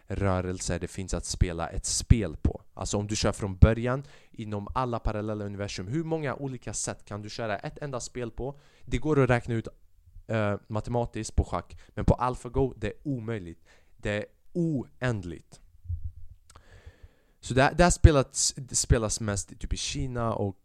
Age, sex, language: 20-39, male, Swedish